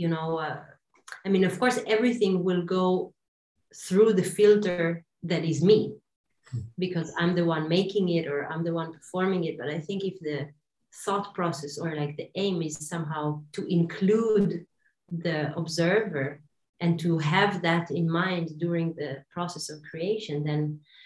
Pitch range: 165-195 Hz